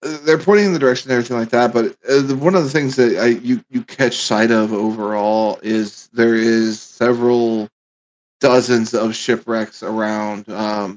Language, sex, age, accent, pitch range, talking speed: English, male, 20-39, American, 110-125 Hz, 170 wpm